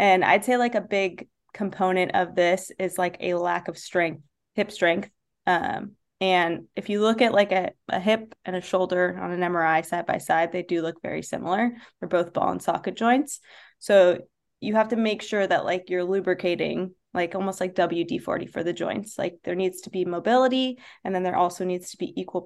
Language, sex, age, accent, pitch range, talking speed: English, female, 20-39, American, 175-210 Hz, 210 wpm